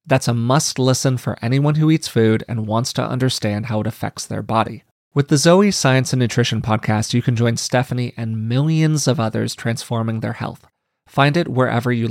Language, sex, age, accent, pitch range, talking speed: English, male, 30-49, American, 110-135 Hz, 195 wpm